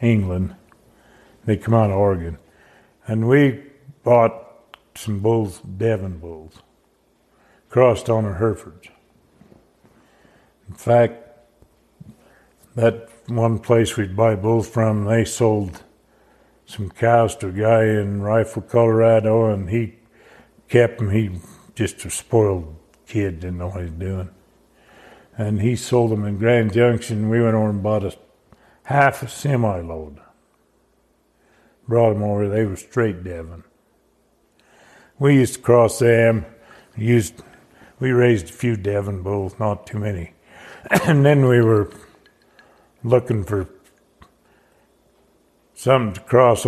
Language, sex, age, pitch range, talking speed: English, male, 60-79, 100-120 Hz, 125 wpm